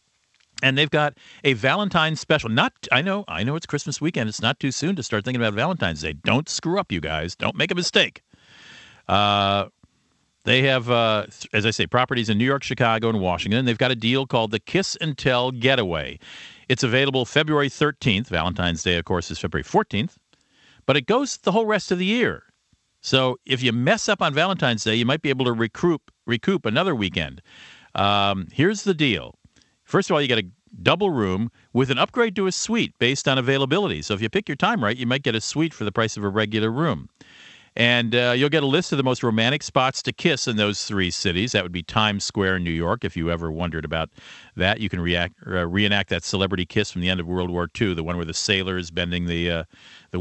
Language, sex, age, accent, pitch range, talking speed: English, male, 50-69, American, 95-135 Hz, 225 wpm